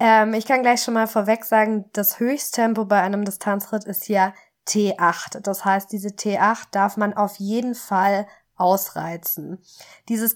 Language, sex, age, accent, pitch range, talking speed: German, female, 20-39, German, 200-230 Hz, 150 wpm